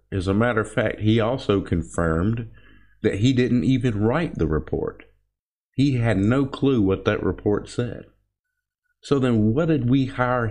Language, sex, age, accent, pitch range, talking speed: English, male, 50-69, American, 95-120 Hz, 165 wpm